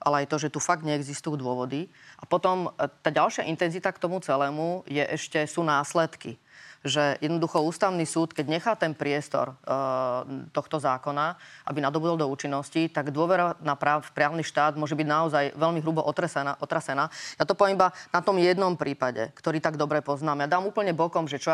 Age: 30-49